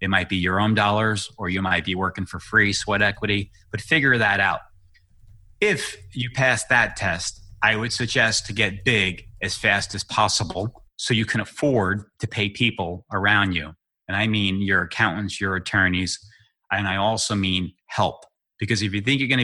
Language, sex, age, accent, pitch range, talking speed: English, male, 30-49, American, 100-115 Hz, 190 wpm